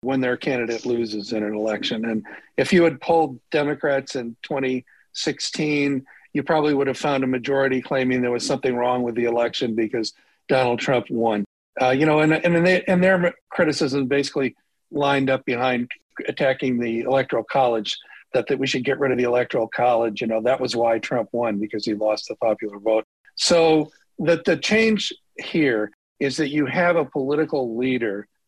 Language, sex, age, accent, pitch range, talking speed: English, male, 50-69, American, 120-150 Hz, 180 wpm